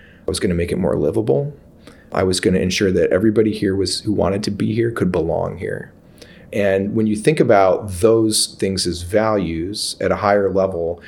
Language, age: English, 30-49